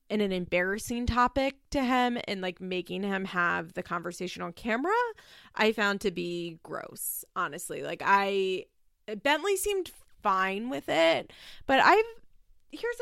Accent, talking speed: American, 145 wpm